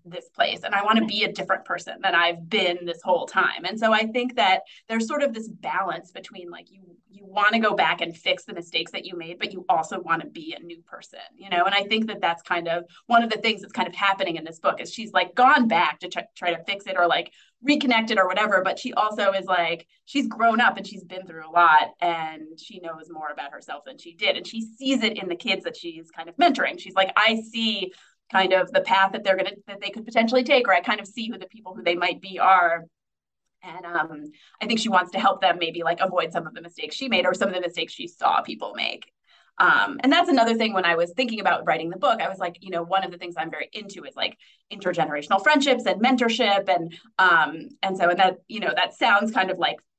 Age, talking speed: 30-49, 265 wpm